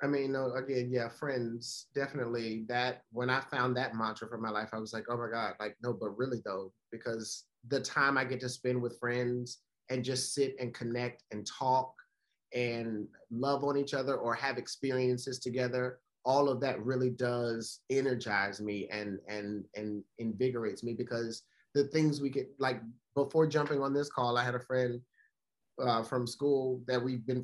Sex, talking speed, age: male, 185 wpm, 30-49